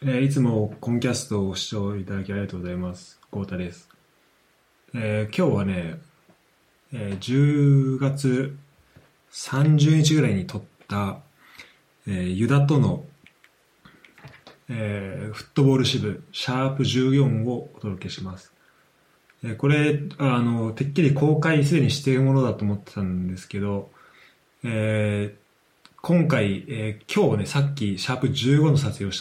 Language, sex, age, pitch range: Japanese, male, 20-39, 95-140 Hz